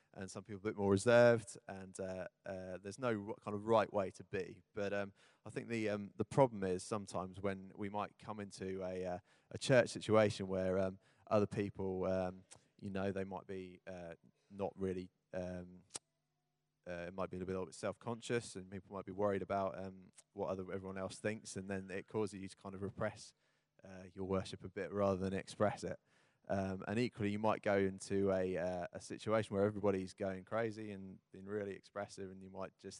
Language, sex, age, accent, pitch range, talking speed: English, male, 20-39, British, 95-105 Hz, 205 wpm